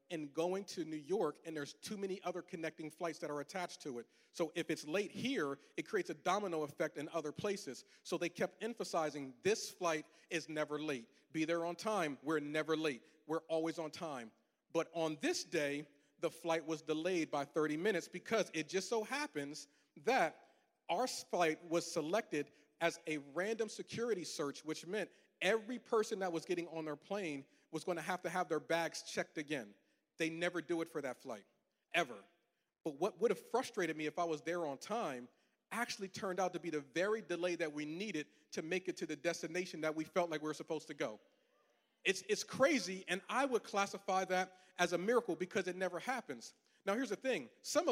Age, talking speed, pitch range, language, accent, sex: 40-59, 205 wpm, 155-195 Hz, English, American, male